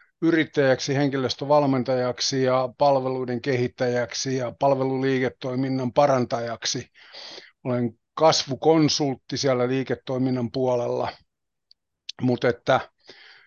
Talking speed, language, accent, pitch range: 60 wpm, Finnish, native, 125-140 Hz